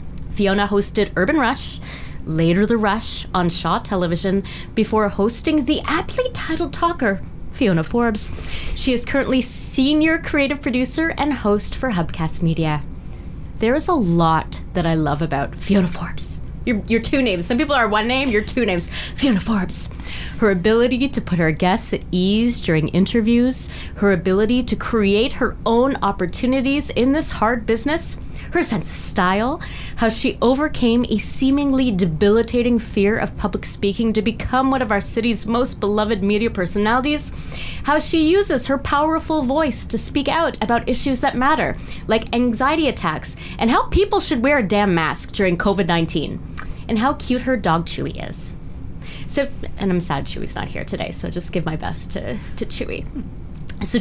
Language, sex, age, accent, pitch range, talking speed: English, female, 20-39, American, 195-270 Hz, 165 wpm